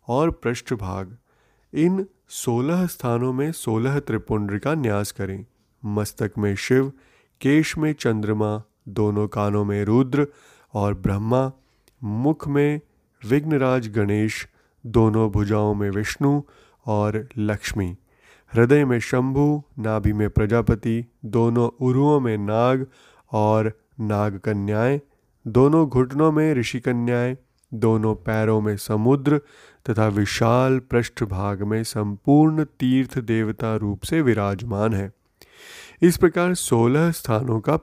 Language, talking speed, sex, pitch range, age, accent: Hindi, 110 wpm, male, 105-135 Hz, 30-49, native